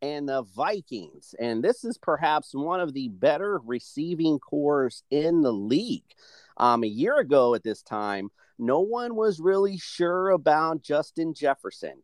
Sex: male